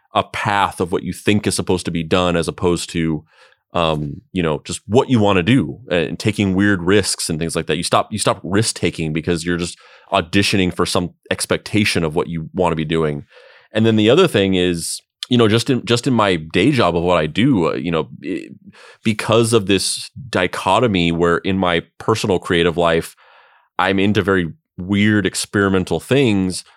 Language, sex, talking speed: English, male, 195 wpm